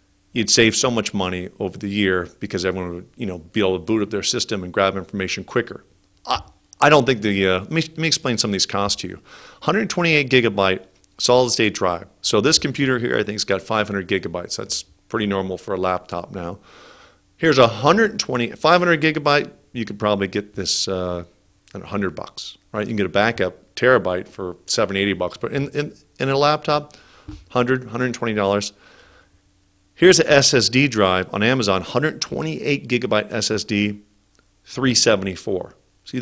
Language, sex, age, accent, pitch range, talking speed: English, male, 50-69, American, 95-125 Hz, 175 wpm